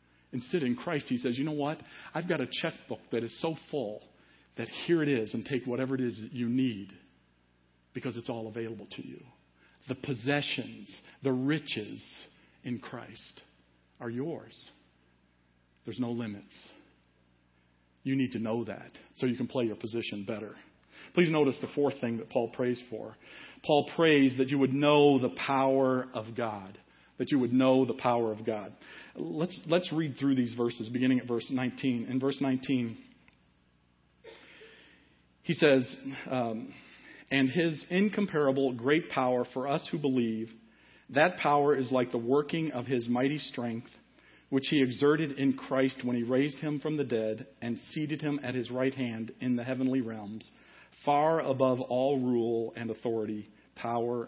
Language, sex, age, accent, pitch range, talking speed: English, male, 50-69, American, 110-135 Hz, 165 wpm